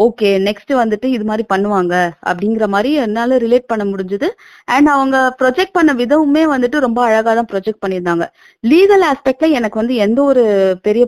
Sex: female